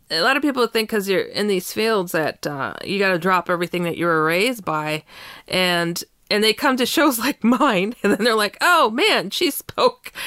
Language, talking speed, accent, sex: English, 220 wpm, American, female